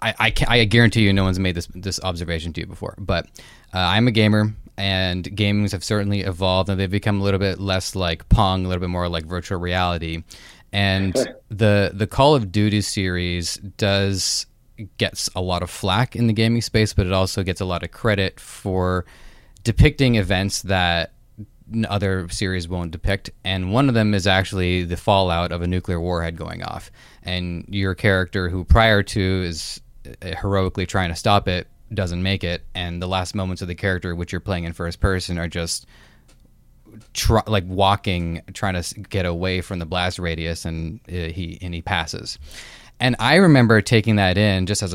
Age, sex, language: 20-39, male, English